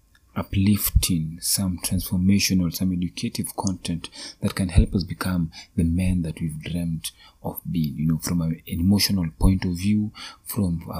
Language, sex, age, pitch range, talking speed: English, male, 30-49, 85-105 Hz, 155 wpm